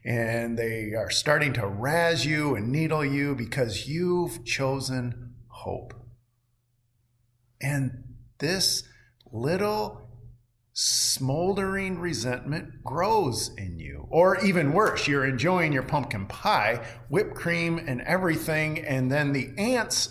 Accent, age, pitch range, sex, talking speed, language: American, 40-59, 115-150 Hz, male, 115 wpm, English